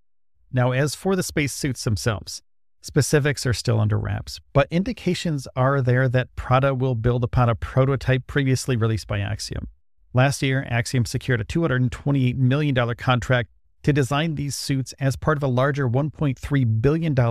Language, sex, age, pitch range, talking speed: English, male, 40-59, 110-140 Hz, 155 wpm